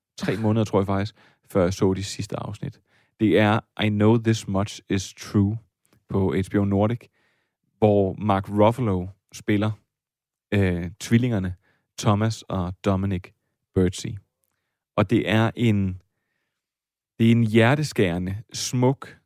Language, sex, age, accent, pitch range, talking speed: Danish, male, 30-49, native, 95-115 Hz, 130 wpm